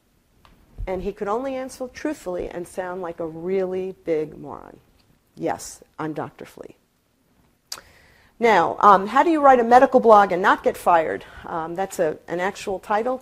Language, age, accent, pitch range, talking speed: English, 50-69, American, 185-235 Hz, 165 wpm